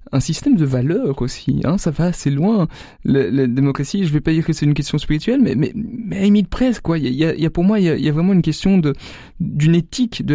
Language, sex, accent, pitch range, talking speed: French, male, French, 135-170 Hz, 280 wpm